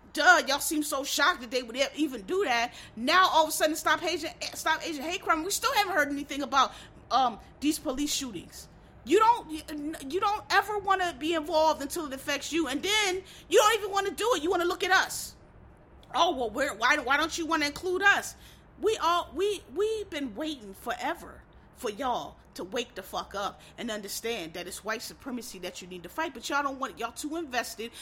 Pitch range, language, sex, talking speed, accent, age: 265-350 Hz, English, female, 220 wpm, American, 30-49